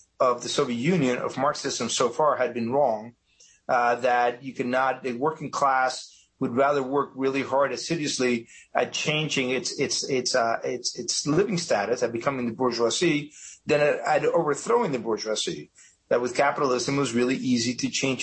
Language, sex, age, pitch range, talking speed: English, male, 40-59, 125-145 Hz, 175 wpm